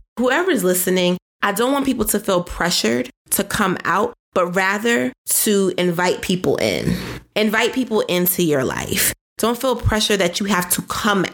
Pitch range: 180-225 Hz